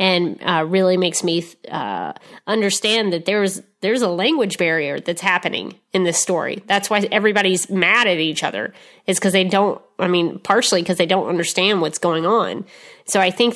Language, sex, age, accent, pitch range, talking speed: English, female, 30-49, American, 170-200 Hz, 185 wpm